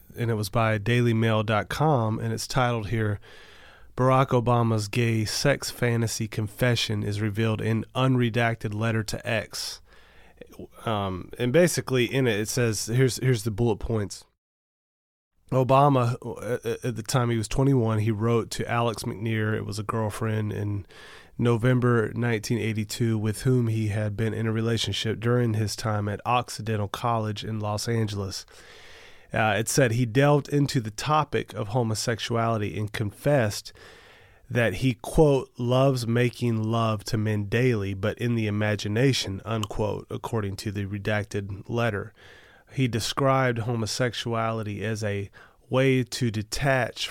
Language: English